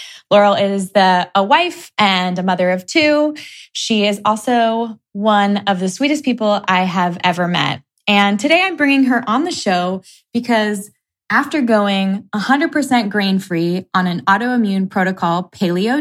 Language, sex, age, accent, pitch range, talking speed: English, female, 20-39, American, 185-245 Hz, 150 wpm